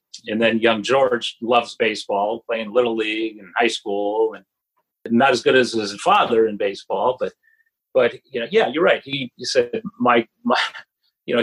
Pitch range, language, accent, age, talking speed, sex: 115-180 Hz, English, American, 40-59, 185 wpm, male